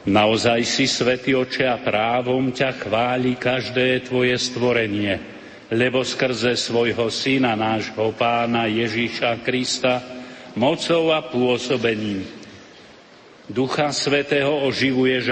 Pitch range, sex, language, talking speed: 115-130 Hz, male, Slovak, 100 wpm